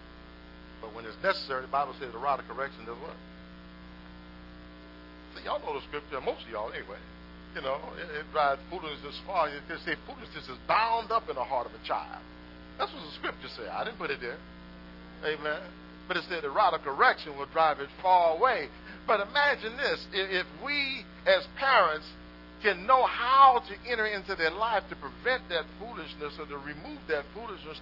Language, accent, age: English, American, 50-69